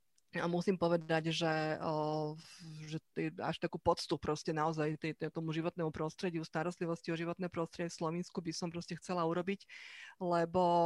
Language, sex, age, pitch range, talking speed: Slovak, female, 30-49, 165-200 Hz, 150 wpm